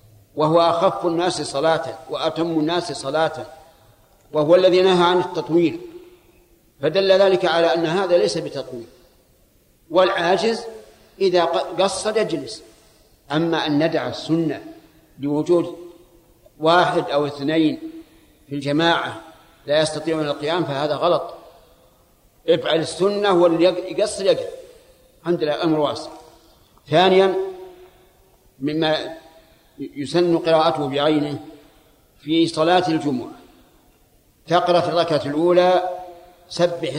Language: Arabic